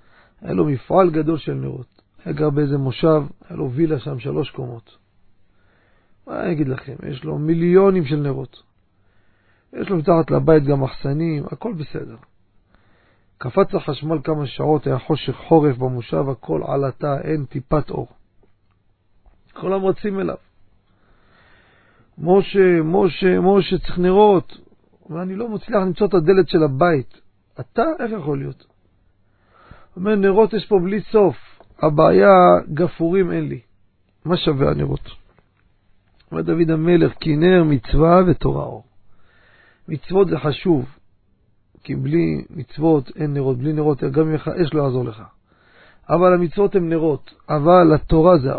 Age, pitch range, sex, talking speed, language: 40-59, 110-170 Hz, male, 140 wpm, Hebrew